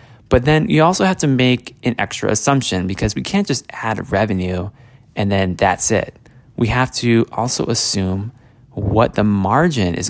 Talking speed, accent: 180 wpm, American